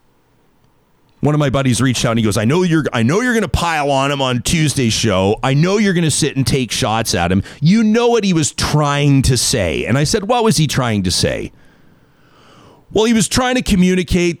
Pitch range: 115-155 Hz